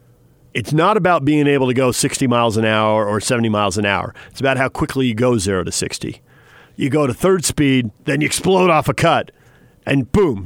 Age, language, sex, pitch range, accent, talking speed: 40-59, English, male, 115-155 Hz, American, 220 wpm